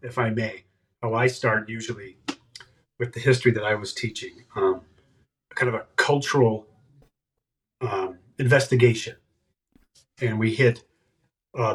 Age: 30-49